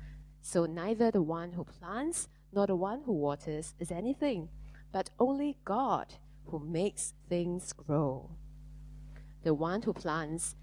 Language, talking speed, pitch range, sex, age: English, 135 wpm, 150-175 Hz, female, 20-39